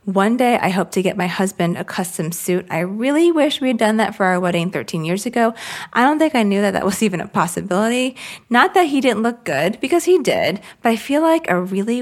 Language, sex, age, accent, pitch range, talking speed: English, female, 30-49, American, 180-225 Hz, 250 wpm